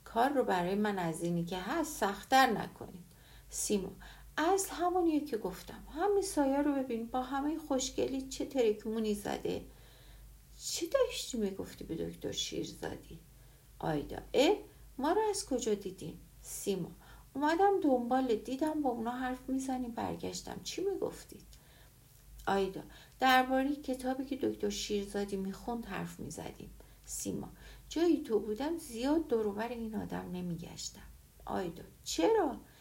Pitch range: 200-275 Hz